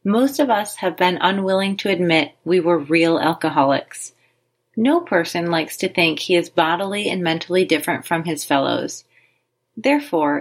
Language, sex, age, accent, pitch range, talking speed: English, female, 30-49, American, 155-195 Hz, 155 wpm